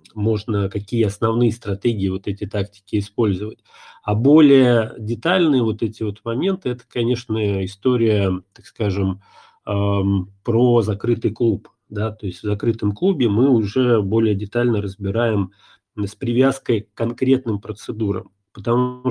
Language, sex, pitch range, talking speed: Russian, male, 100-125 Hz, 120 wpm